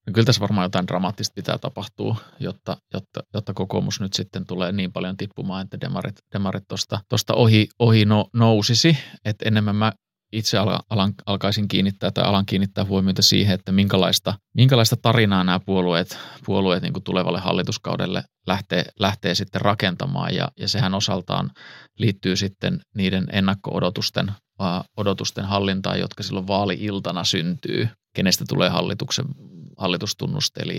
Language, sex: Finnish, male